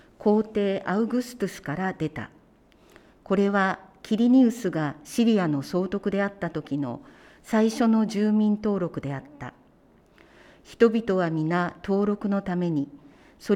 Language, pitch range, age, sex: Japanese, 155-210 Hz, 50-69, female